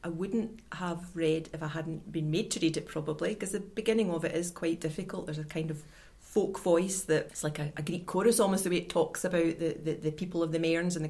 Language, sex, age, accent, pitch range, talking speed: English, female, 30-49, British, 160-180 Hz, 260 wpm